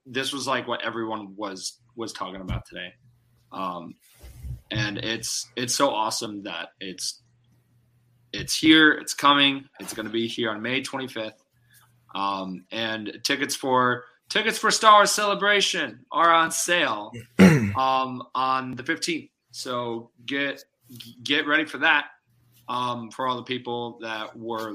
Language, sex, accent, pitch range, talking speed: English, male, American, 105-130 Hz, 145 wpm